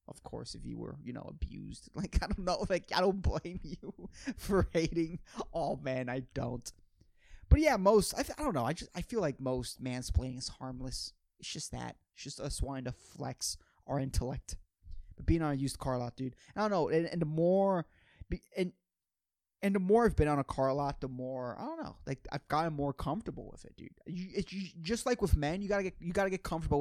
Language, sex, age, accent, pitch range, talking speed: English, male, 20-39, American, 130-180 Hz, 230 wpm